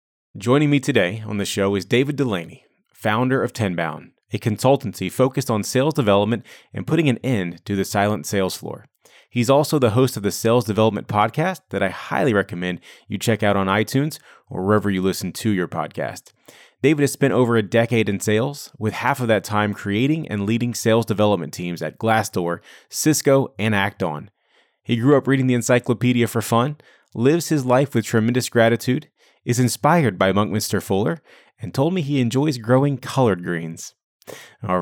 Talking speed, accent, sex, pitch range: 180 wpm, American, male, 100-130 Hz